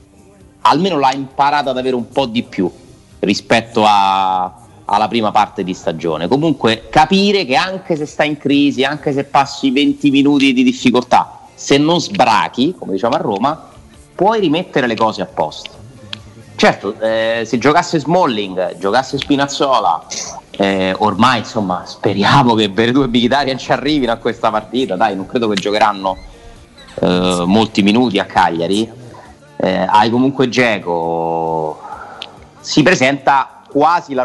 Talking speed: 145 wpm